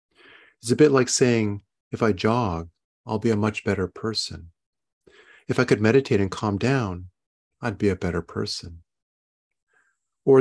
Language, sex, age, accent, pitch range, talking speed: English, male, 40-59, American, 95-130 Hz, 155 wpm